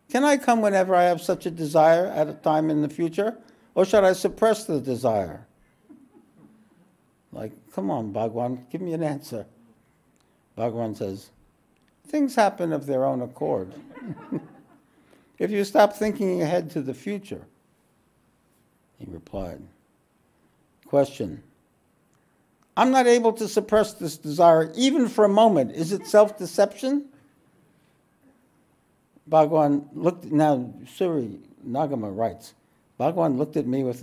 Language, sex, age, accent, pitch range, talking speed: English, male, 60-79, American, 135-200 Hz, 130 wpm